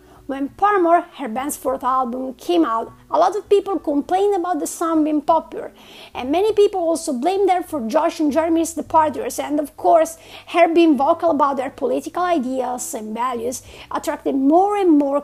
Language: English